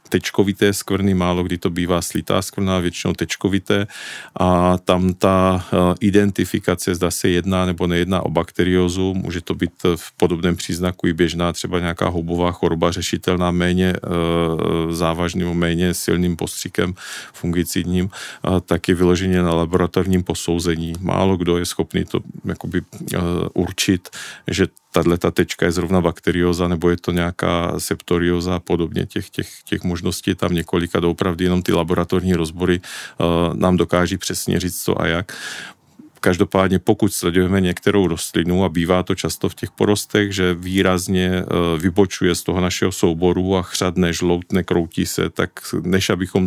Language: Slovak